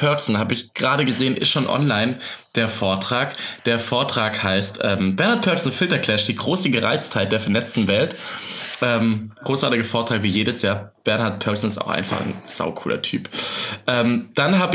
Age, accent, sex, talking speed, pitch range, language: 20-39, German, male, 165 wpm, 110-135 Hz, German